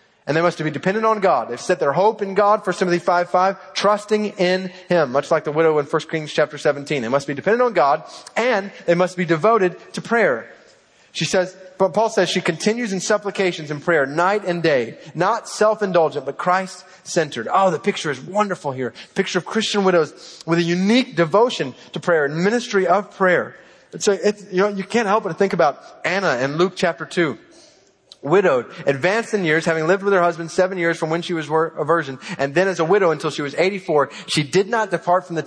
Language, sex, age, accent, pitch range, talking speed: English, male, 30-49, American, 150-190 Hz, 215 wpm